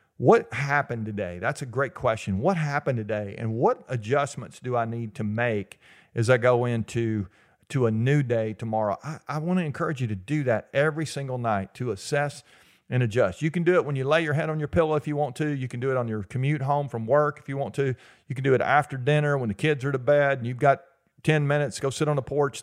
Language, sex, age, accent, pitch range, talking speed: English, male, 40-59, American, 120-155 Hz, 250 wpm